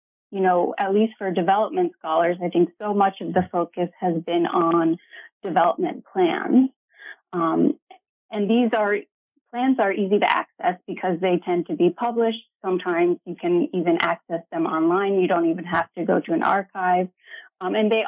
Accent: American